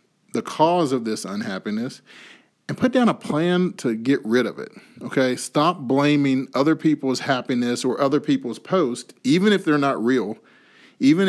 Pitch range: 130-165 Hz